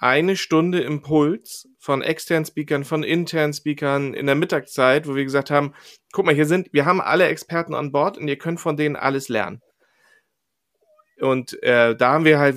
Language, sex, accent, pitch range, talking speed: German, male, German, 130-155 Hz, 185 wpm